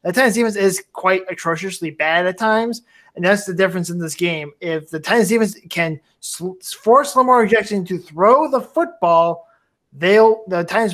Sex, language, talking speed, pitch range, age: male, English, 175 wpm, 180-220 Hz, 20-39